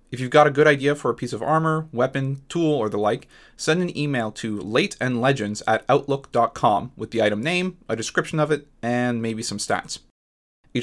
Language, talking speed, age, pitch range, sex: English, 200 wpm, 30-49, 120-155 Hz, male